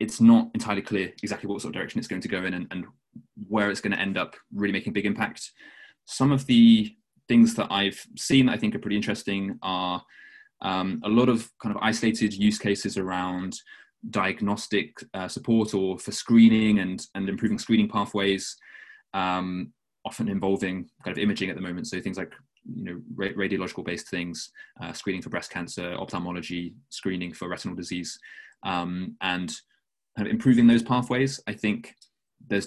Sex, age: male, 20-39